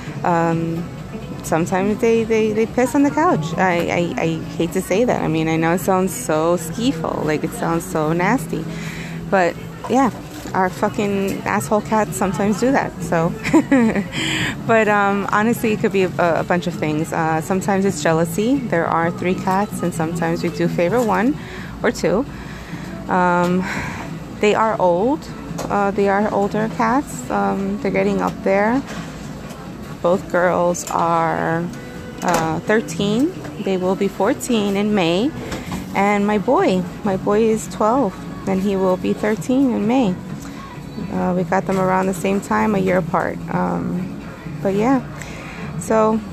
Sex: female